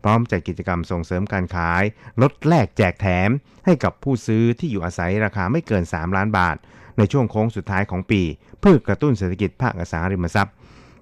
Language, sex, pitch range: Thai, male, 90-115 Hz